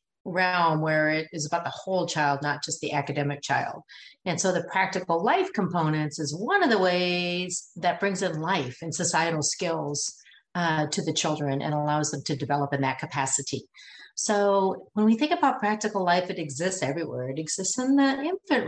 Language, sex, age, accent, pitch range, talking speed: English, female, 40-59, American, 155-205 Hz, 185 wpm